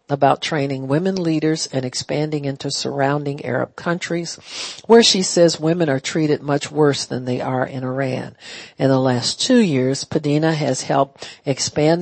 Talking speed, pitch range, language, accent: 160 wpm, 135-165 Hz, English, American